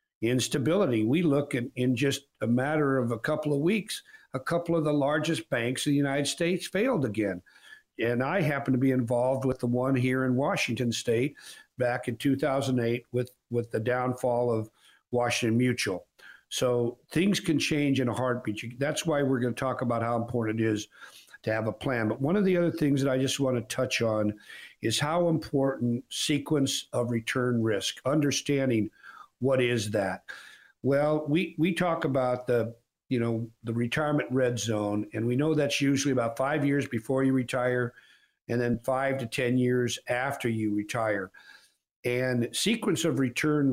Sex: male